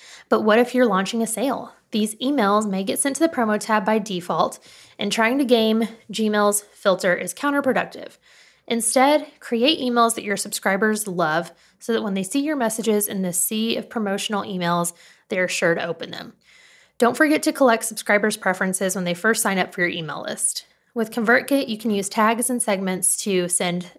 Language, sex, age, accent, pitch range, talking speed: English, female, 20-39, American, 190-240 Hz, 195 wpm